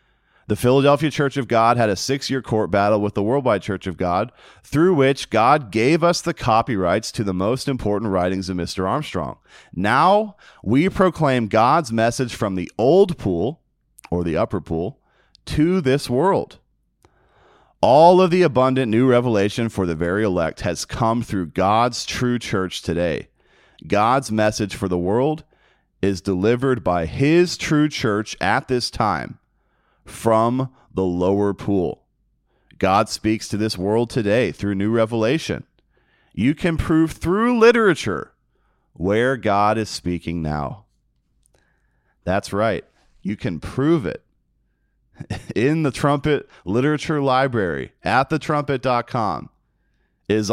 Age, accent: 30-49, American